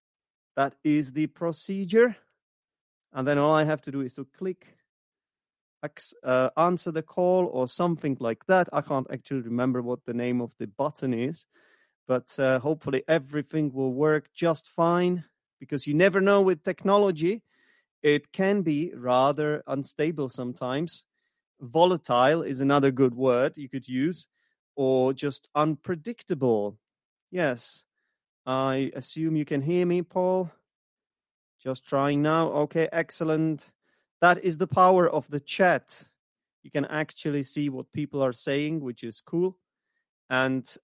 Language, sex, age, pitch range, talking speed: English, male, 30-49, 135-175 Hz, 145 wpm